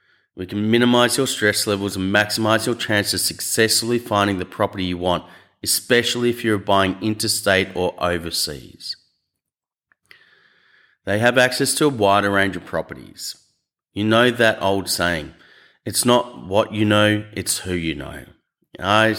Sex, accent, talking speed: male, Australian, 150 wpm